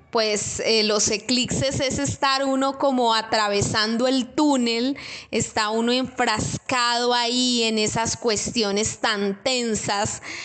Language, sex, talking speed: Spanish, female, 115 wpm